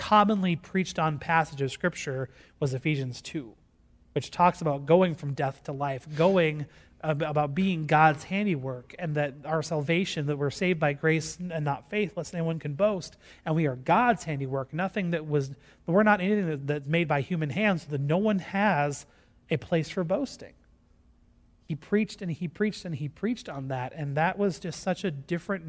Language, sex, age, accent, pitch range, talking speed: English, male, 30-49, American, 135-170 Hz, 185 wpm